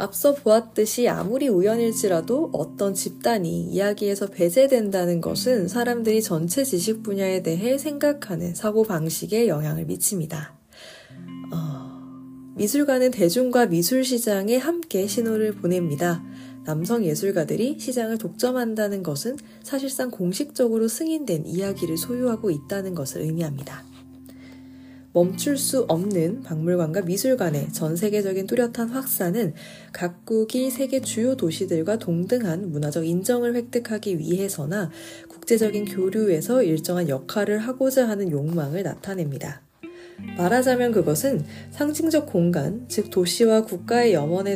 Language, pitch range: Korean, 170-235 Hz